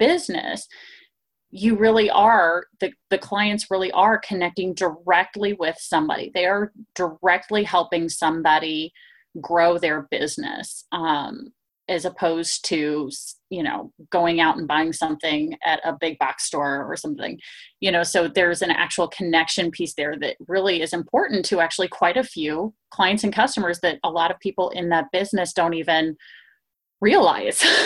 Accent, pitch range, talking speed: American, 170-220 Hz, 155 wpm